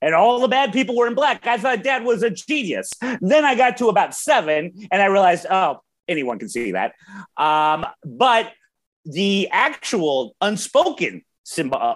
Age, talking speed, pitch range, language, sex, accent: 30-49, 165 wpm, 155-245 Hz, English, male, American